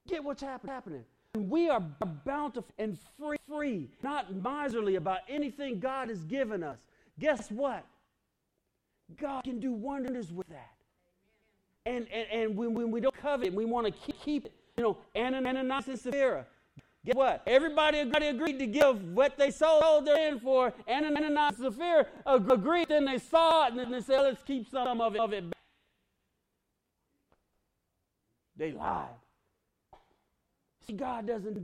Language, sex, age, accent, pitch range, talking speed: English, male, 40-59, American, 220-325 Hz, 150 wpm